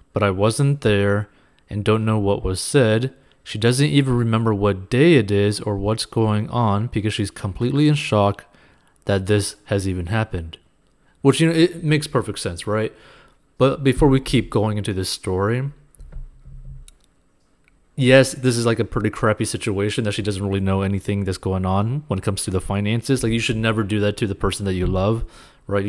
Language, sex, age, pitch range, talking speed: English, male, 30-49, 100-125 Hz, 195 wpm